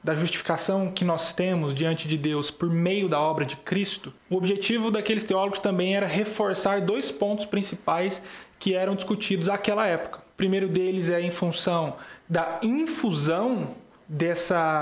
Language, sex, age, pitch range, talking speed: Portuguese, male, 20-39, 180-225 Hz, 155 wpm